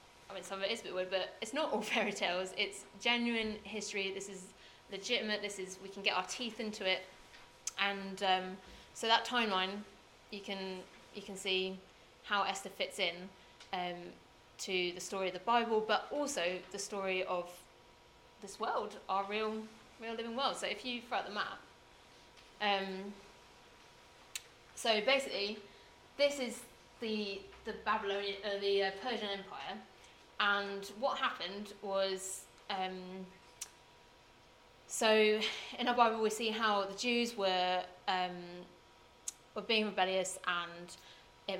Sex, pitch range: female, 185-215 Hz